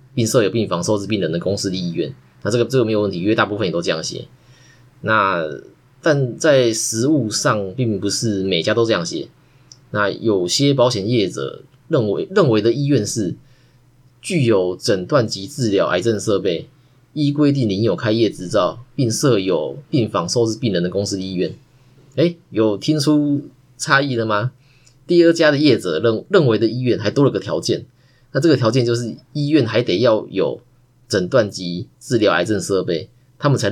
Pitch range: 110-130 Hz